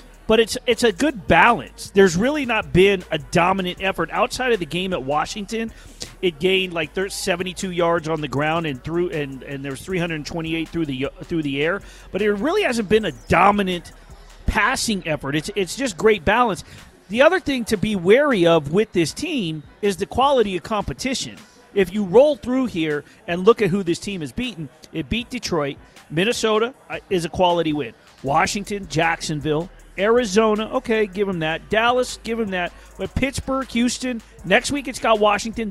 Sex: male